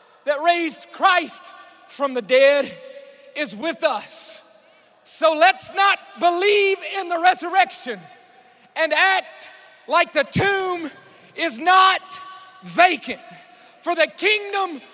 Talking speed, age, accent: 110 wpm, 40-59, American